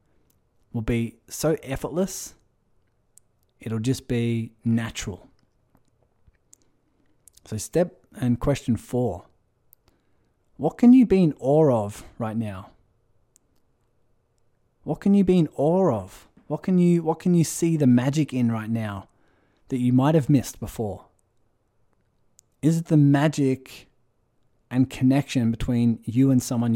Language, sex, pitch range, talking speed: English, male, 110-140 Hz, 130 wpm